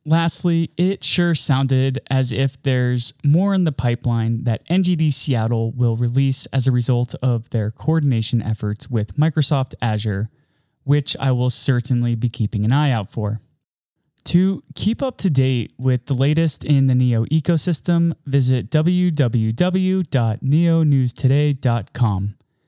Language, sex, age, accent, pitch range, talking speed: English, male, 20-39, American, 120-160 Hz, 130 wpm